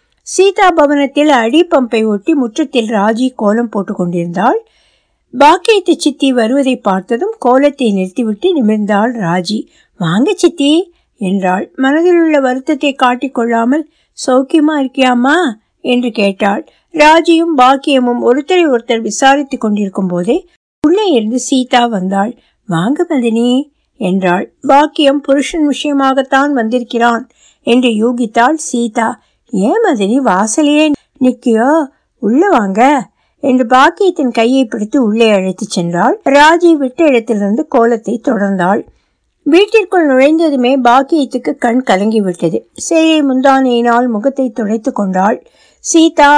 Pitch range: 225-290 Hz